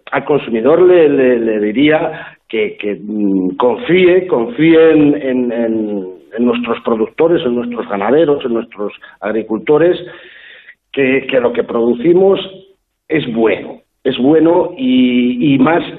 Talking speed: 125 wpm